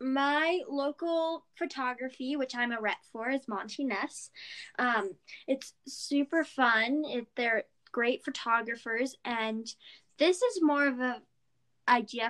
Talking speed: 120 wpm